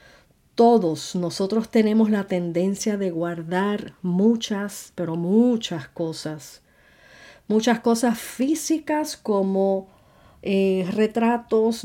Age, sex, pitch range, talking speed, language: 40-59, female, 180-225 Hz, 85 wpm, Spanish